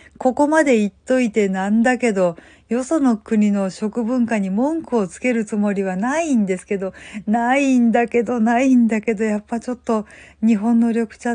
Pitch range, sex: 185-235 Hz, female